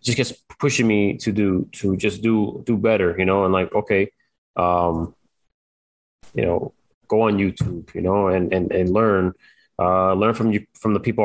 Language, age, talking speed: English, 20-39, 185 wpm